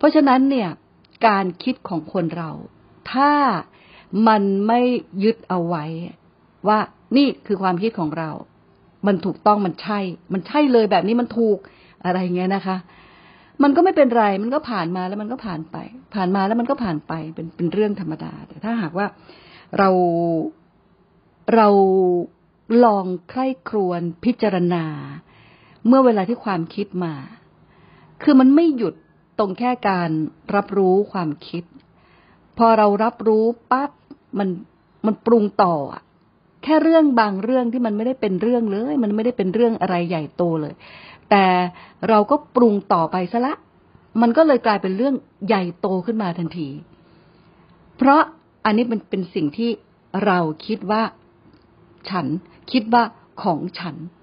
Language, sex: Thai, female